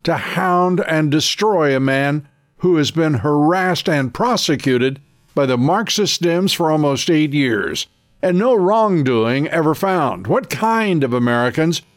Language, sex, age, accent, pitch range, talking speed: English, male, 60-79, American, 140-185 Hz, 145 wpm